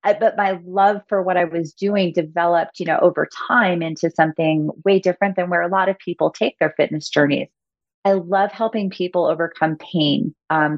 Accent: American